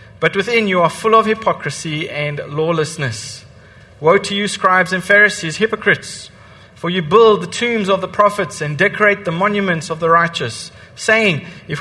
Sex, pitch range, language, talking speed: male, 140-185 Hz, English, 170 wpm